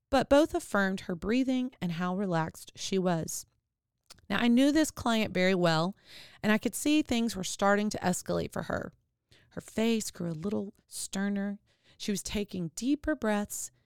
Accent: American